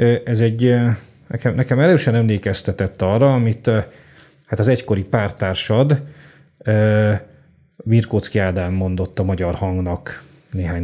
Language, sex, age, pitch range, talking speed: Hungarian, male, 30-49, 100-125 Hz, 105 wpm